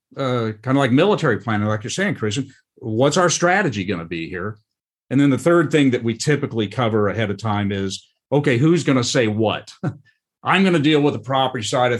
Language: English